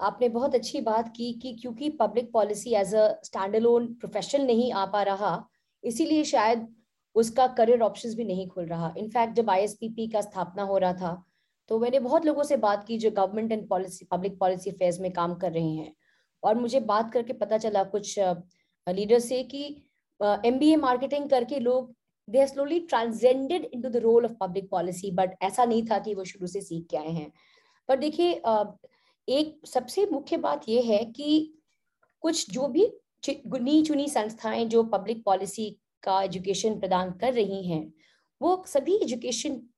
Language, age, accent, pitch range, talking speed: Hindi, 20-39, native, 200-280 Hz, 180 wpm